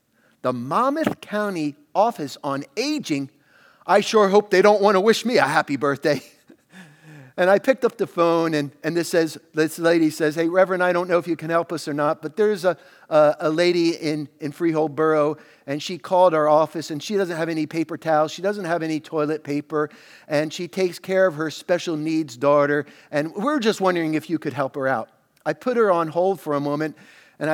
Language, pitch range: English, 150-185 Hz